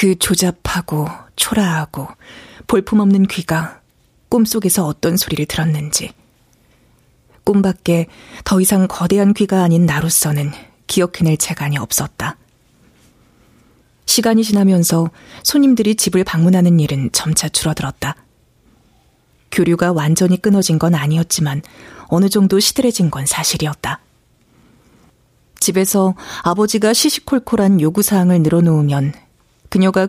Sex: female